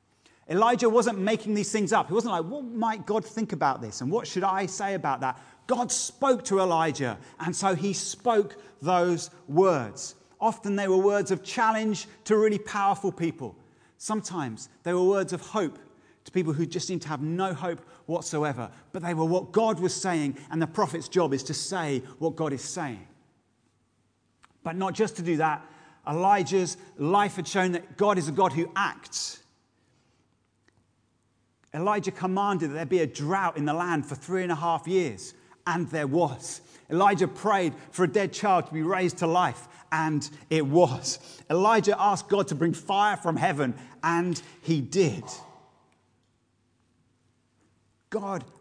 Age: 30-49